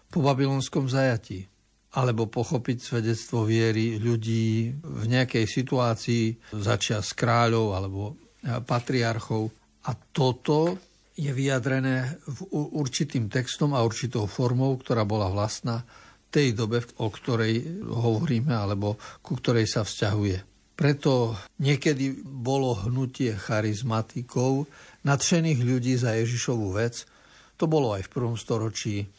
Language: Slovak